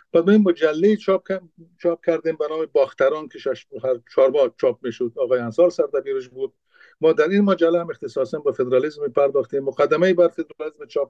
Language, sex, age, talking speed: Persian, male, 50-69, 185 wpm